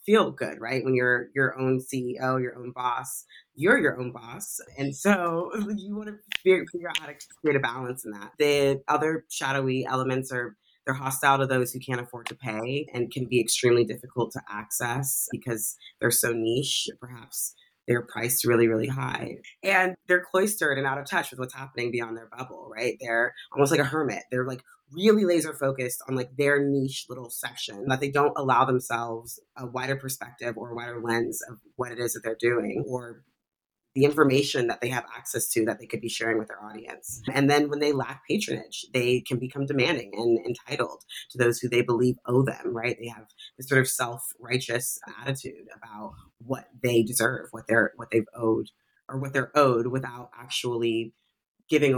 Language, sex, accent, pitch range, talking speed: English, female, American, 120-140 Hz, 195 wpm